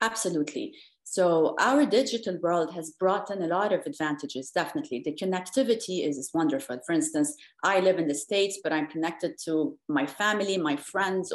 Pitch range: 155-225 Hz